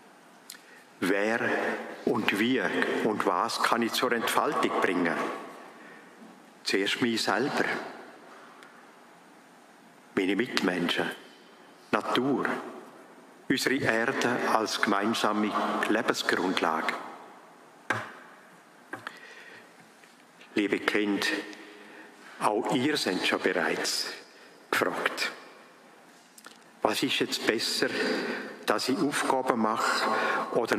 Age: 50-69